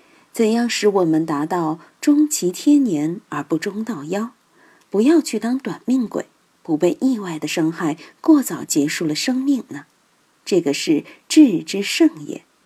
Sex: female